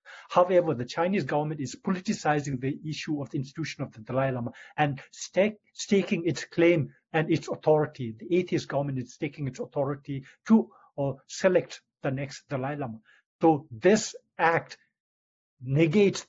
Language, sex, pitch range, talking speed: English, male, 135-170 Hz, 145 wpm